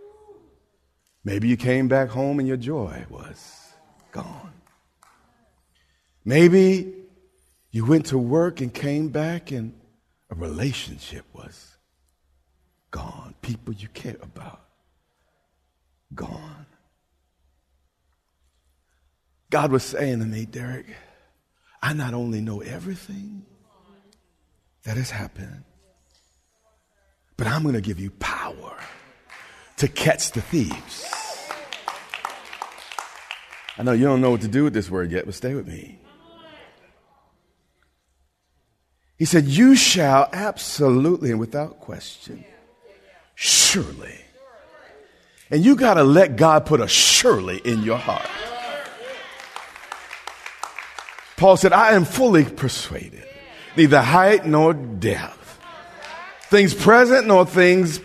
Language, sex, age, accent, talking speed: English, male, 50-69, American, 110 wpm